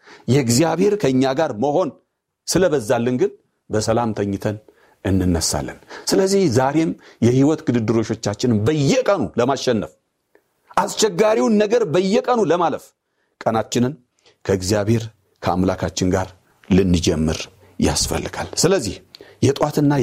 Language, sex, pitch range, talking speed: Amharic, male, 115-190 Hz, 85 wpm